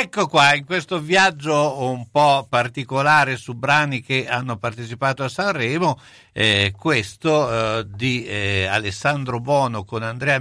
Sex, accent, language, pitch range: male, native, Italian, 105-140 Hz